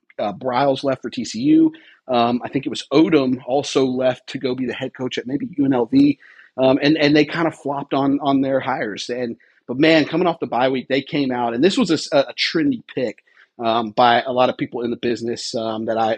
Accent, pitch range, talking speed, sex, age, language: American, 120-150 Hz, 235 wpm, male, 40-59, English